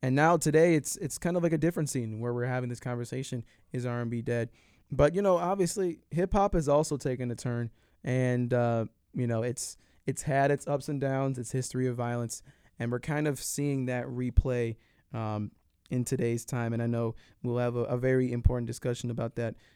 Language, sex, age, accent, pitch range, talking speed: English, male, 20-39, American, 115-140 Hz, 205 wpm